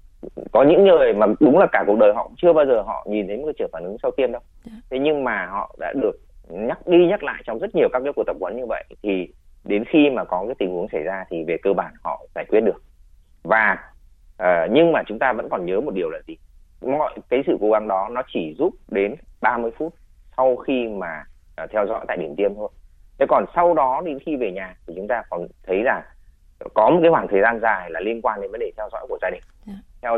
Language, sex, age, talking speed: Vietnamese, male, 30-49, 250 wpm